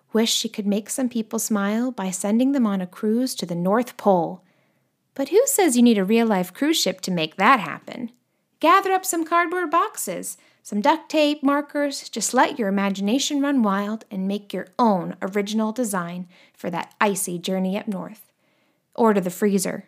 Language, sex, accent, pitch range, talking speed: English, female, American, 195-260 Hz, 185 wpm